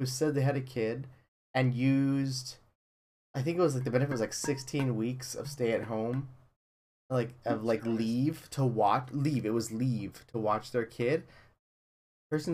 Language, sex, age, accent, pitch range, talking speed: English, male, 20-39, American, 110-135 Hz, 175 wpm